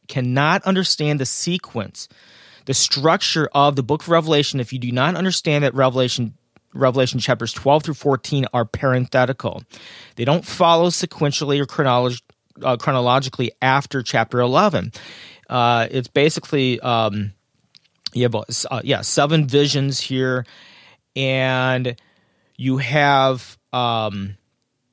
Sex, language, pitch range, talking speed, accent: male, English, 125-155 Hz, 125 wpm, American